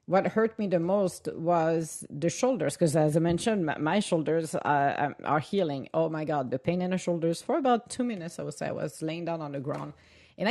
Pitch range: 165-235 Hz